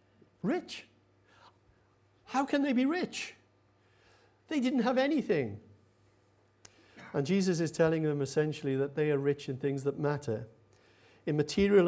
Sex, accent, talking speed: male, British, 130 wpm